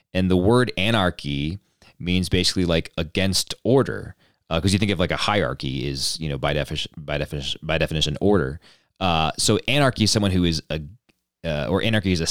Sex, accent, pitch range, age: male, American, 80-105 Hz, 30-49